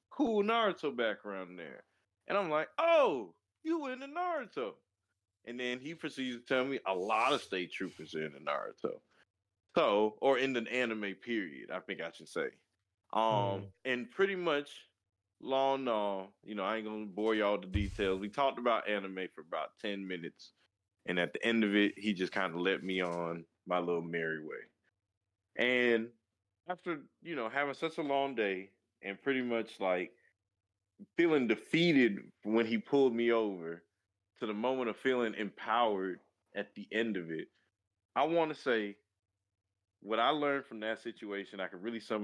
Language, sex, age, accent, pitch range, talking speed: English, male, 20-39, American, 95-125 Hz, 175 wpm